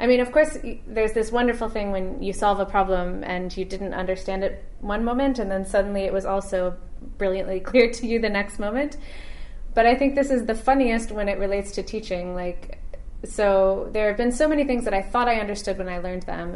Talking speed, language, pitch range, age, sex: 225 wpm, English, 190-245 Hz, 20-39, female